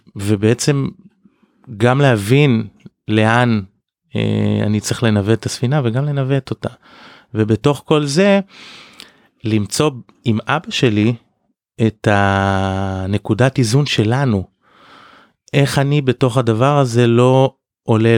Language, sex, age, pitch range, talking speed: Hebrew, male, 30-49, 110-140 Hz, 100 wpm